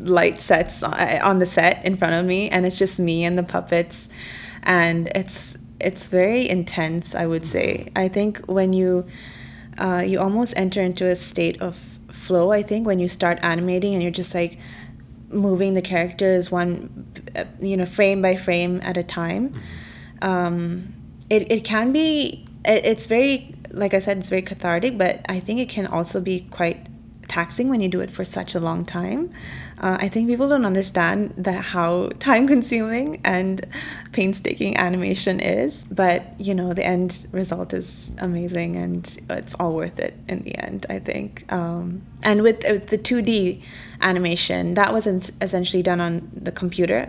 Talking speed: 175 wpm